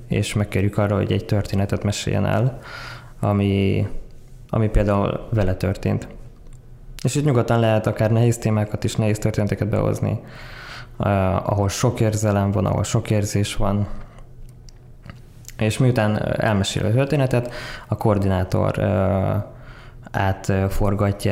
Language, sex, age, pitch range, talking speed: Hungarian, male, 20-39, 105-125 Hz, 115 wpm